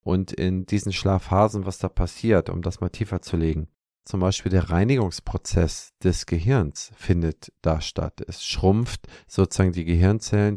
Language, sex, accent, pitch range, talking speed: German, male, German, 85-105 Hz, 155 wpm